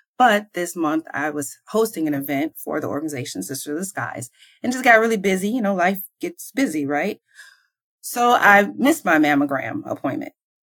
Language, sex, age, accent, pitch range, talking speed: English, female, 30-49, American, 150-225 Hz, 180 wpm